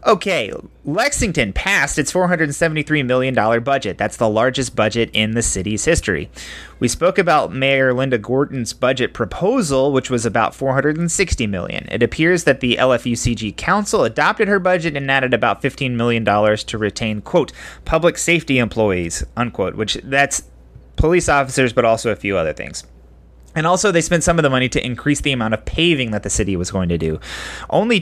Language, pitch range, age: English, 110-150 Hz, 30-49